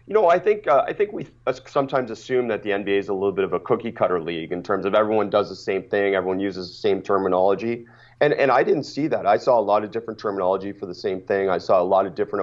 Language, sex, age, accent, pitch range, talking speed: English, male, 30-49, American, 95-120 Hz, 275 wpm